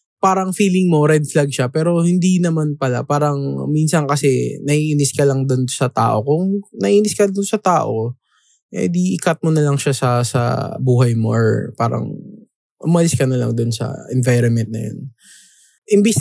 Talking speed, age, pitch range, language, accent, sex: 180 wpm, 20-39, 130-180 Hz, Filipino, native, male